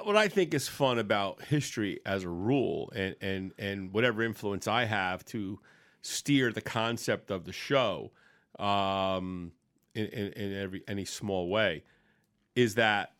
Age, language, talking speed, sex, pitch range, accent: 40-59, English, 155 wpm, male, 100-125 Hz, American